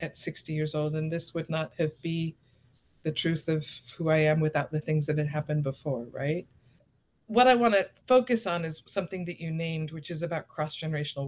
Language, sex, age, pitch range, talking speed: English, female, 50-69, 140-155 Hz, 215 wpm